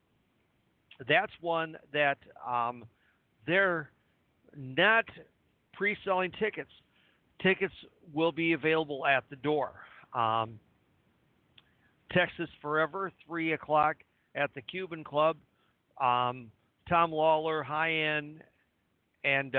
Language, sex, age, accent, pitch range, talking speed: English, male, 50-69, American, 130-165 Hz, 90 wpm